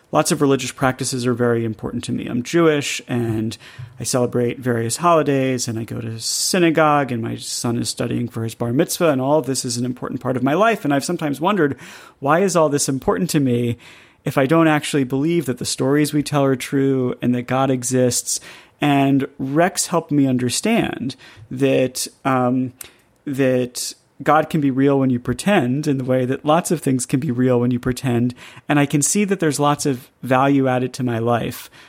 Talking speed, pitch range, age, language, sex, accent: 200 wpm, 125-145 Hz, 30-49, English, male, American